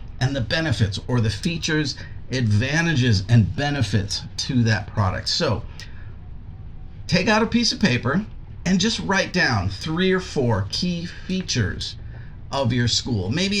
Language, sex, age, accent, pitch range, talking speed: English, male, 50-69, American, 105-155 Hz, 140 wpm